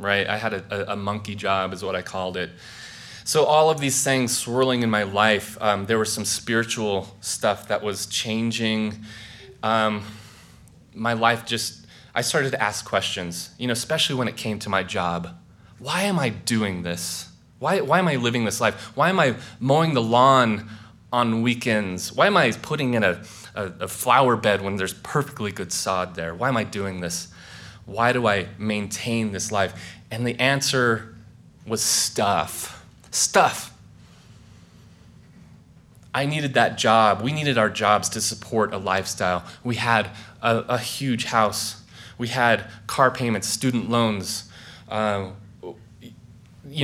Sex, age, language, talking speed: male, 20-39, English, 165 wpm